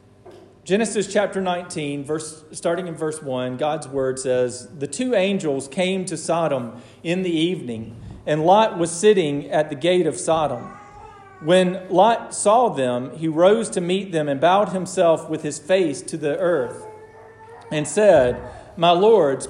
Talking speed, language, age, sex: 155 wpm, English, 40-59, male